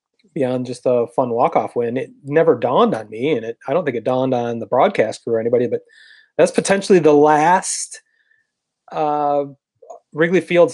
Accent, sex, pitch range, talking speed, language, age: American, male, 125-175 Hz, 180 wpm, English, 30-49